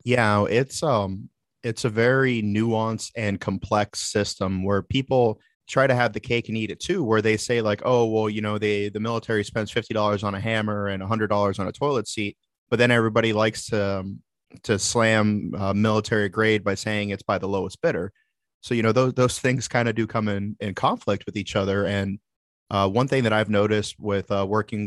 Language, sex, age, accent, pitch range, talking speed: English, male, 30-49, American, 100-115 Hz, 215 wpm